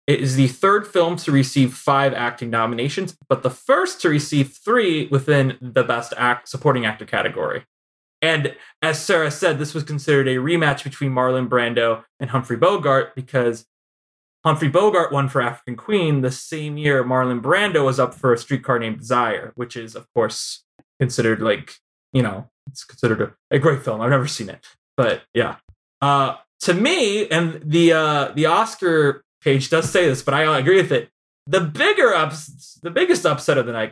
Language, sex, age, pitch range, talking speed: English, male, 20-39, 125-160 Hz, 180 wpm